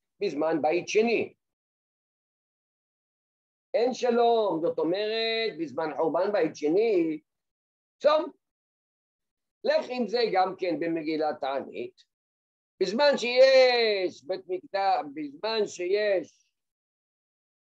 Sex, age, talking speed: male, 50-69, 90 wpm